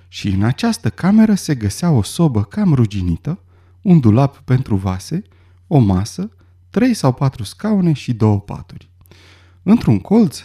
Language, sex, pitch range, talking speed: Romanian, male, 95-155 Hz, 145 wpm